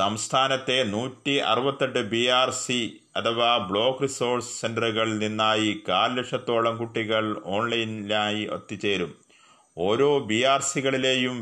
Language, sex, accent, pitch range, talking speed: Malayalam, male, native, 110-125 Hz, 90 wpm